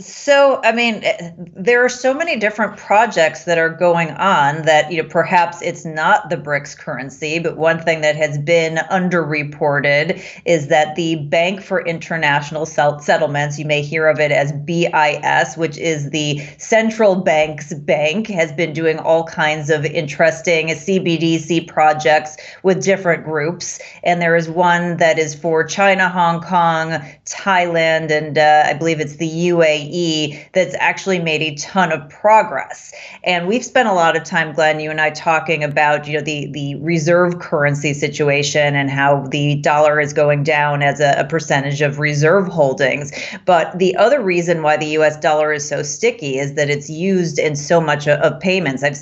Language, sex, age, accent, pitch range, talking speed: English, female, 30-49, American, 150-175 Hz, 175 wpm